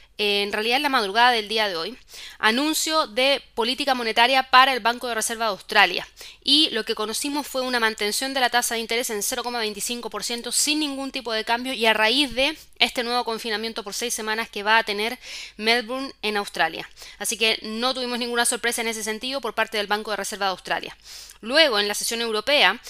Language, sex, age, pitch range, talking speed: Spanish, female, 20-39, 215-255 Hz, 205 wpm